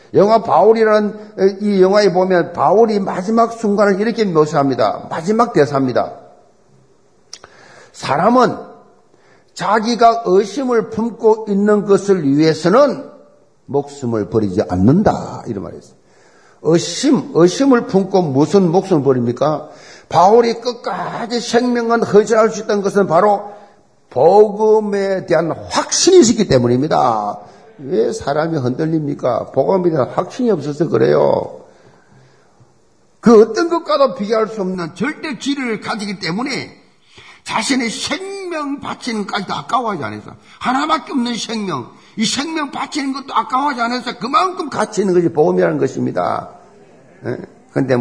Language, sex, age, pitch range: Korean, male, 50-69, 160-235 Hz